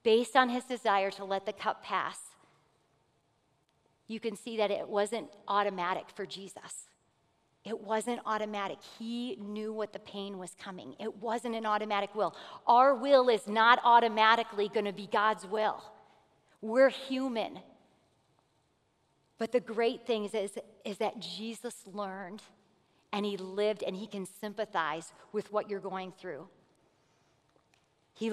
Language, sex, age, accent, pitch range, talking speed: English, female, 40-59, American, 190-225 Hz, 140 wpm